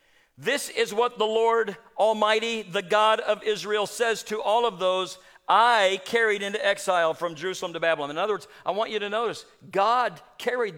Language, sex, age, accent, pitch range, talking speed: English, male, 50-69, American, 190-240 Hz, 185 wpm